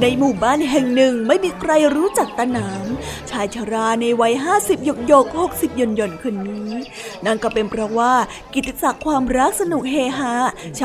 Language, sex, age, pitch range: Thai, female, 20-39, 230-285 Hz